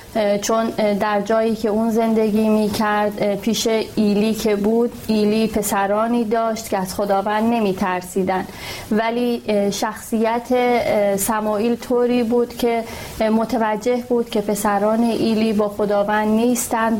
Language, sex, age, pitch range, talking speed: Persian, female, 30-49, 210-230 Hz, 120 wpm